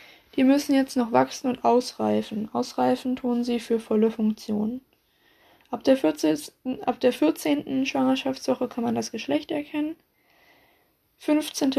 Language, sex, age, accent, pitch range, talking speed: German, female, 20-39, German, 230-270 Hz, 115 wpm